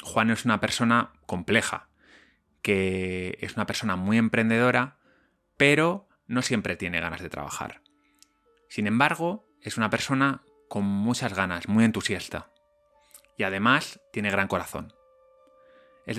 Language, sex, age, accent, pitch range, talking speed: Spanish, male, 30-49, Spanish, 100-145 Hz, 125 wpm